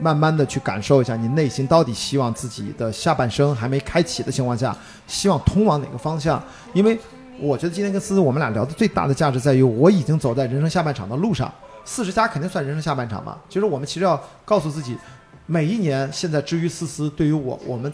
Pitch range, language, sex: 125-175 Hz, Chinese, male